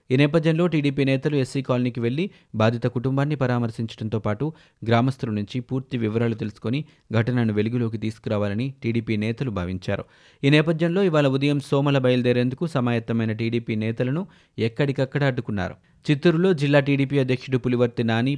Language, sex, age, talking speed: Telugu, male, 30-49, 125 wpm